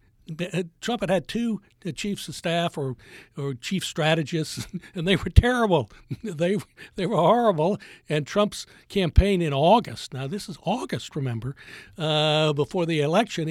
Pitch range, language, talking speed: 145-185 Hz, English, 145 wpm